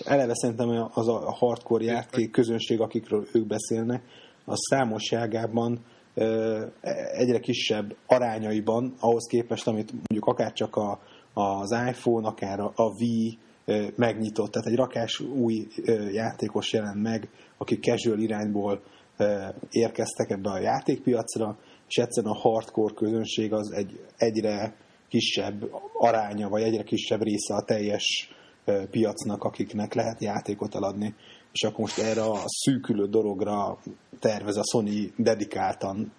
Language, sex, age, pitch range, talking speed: Hungarian, male, 30-49, 105-115 Hz, 120 wpm